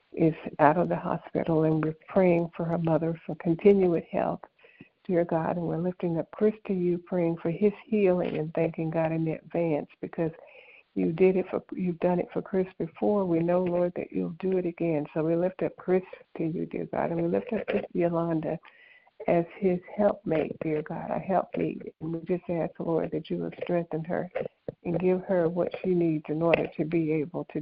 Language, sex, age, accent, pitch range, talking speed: English, female, 60-79, American, 160-180 Hz, 205 wpm